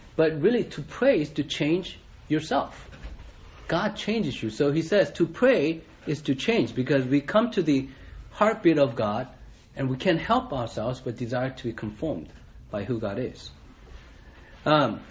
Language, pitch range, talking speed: English, 115-165 Hz, 165 wpm